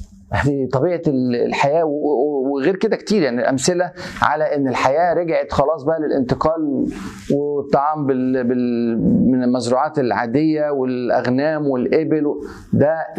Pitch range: 140-200 Hz